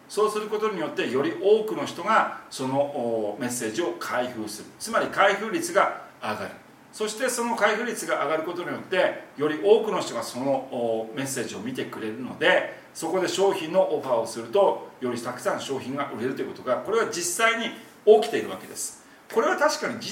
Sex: male